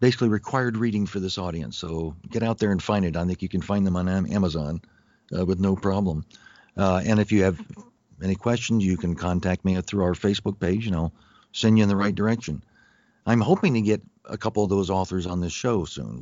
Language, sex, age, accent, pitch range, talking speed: English, male, 50-69, American, 90-110 Hz, 225 wpm